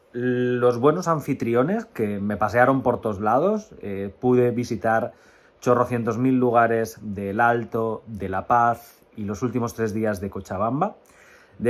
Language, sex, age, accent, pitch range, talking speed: Spanish, male, 30-49, Spanish, 110-130 Hz, 145 wpm